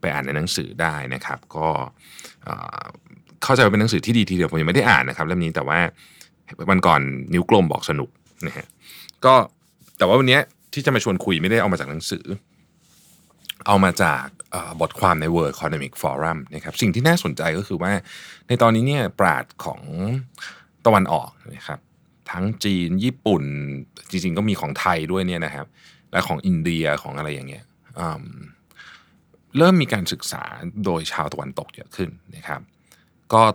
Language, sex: Thai, male